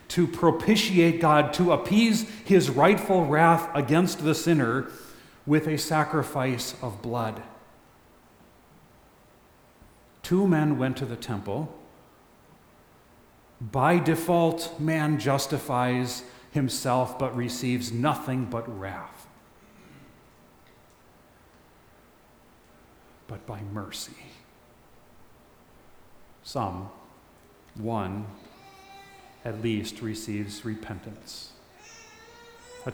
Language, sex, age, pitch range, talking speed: English, male, 40-59, 110-165 Hz, 75 wpm